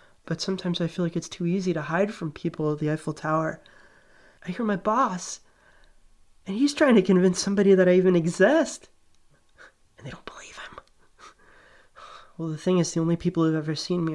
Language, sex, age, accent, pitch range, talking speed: English, male, 20-39, American, 140-190 Hz, 200 wpm